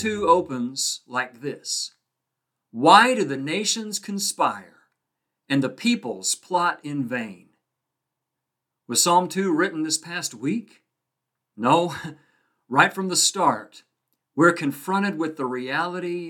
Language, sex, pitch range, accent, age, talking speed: English, male, 135-175 Hz, American, 50-69, 120 wpm